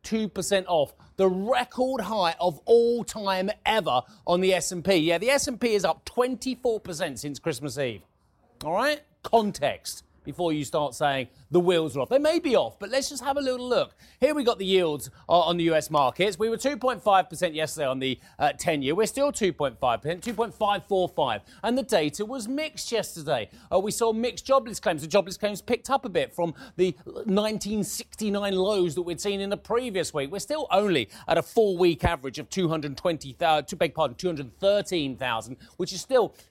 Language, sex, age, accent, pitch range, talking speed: English, male, 30-49, British, 155-215 Hz, 180 wpm